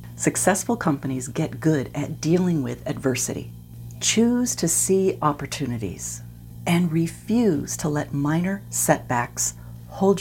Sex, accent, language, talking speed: female, American, English, 110 wpm